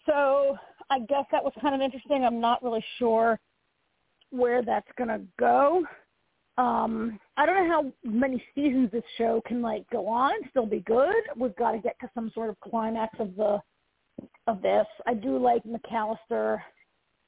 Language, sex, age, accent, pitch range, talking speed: English, female, 40-59, American, 225-270 Hz, 175 wpm